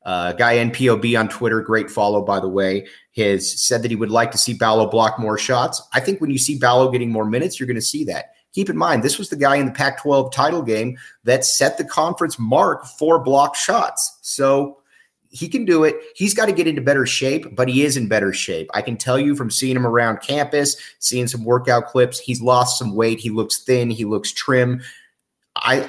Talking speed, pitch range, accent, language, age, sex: 230 wpm, 110-140 Hz, American, English, 30-49, male